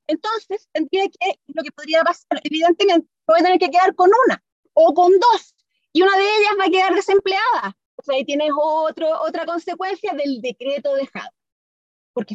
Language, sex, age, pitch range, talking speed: Spanish, female, 30-49, 280-375 Hz, 180 wpm